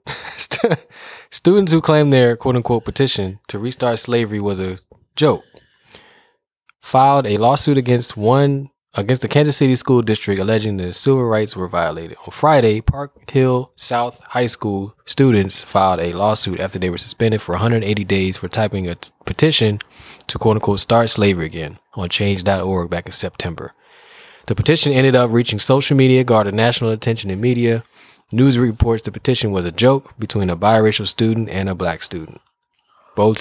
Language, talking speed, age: English, 160 wpm, 20-39